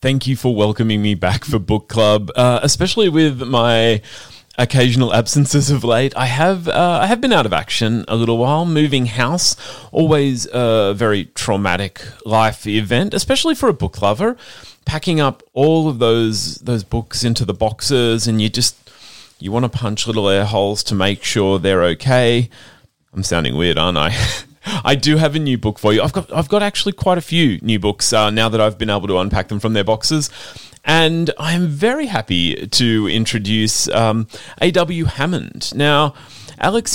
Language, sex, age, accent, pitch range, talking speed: English, male, 30-49, Australian, 110-145 Hz, 185 wpm